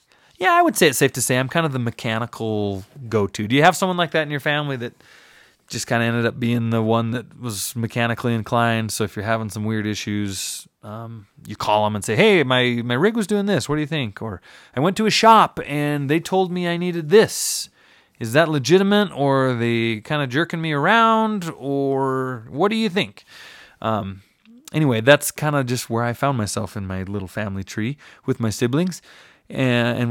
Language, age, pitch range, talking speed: English, 20-39, 110-150 Hz, 215 wpm